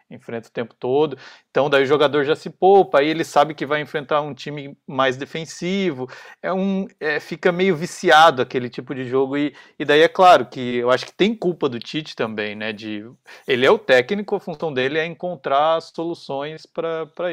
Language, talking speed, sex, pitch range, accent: Portuguese, 200 wpm, male, 125-165 Hz, Brazilian